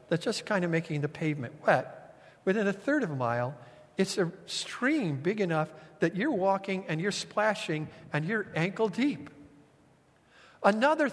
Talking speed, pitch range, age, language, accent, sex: 160 wpm, 150-240 Hz, 50-69, English, American, male